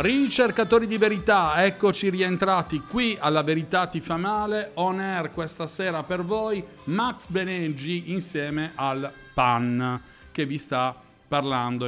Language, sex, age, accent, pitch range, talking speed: Italian, male, 40-59, native, 125-165 Hz, 130 wpm